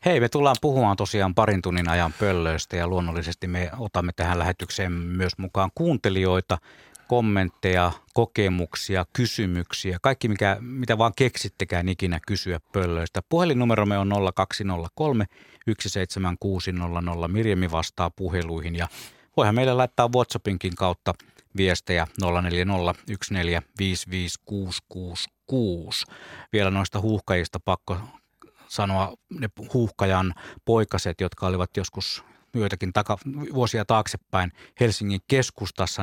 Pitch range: 90-110 Hz